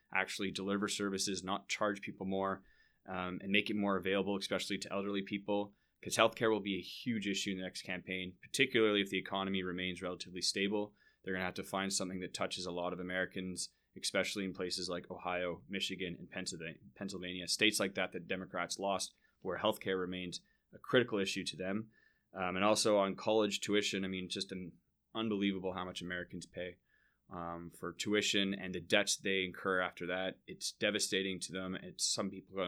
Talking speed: 185 wpm